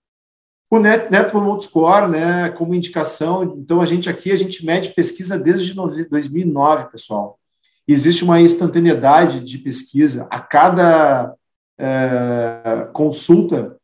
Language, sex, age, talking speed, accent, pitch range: Portuguese, male, 50-69, 115 wpm, Brazilian, 145-175 Hz